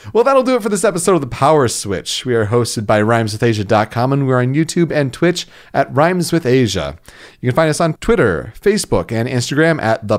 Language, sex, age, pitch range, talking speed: English, male, 40-59, 115-170 Hz, 205 wpm